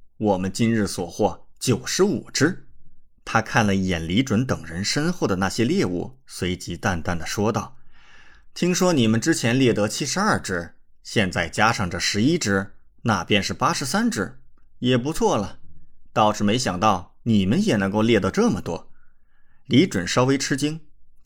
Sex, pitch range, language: male, 90-125 Hz, Chinese